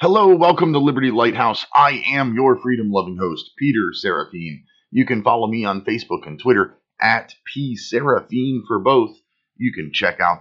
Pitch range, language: 115-155 Hz, English